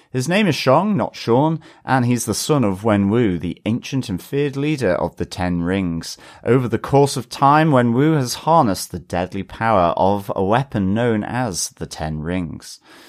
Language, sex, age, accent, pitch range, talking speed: English, male, 30-49, British, 100-145 Hz, 195 wpm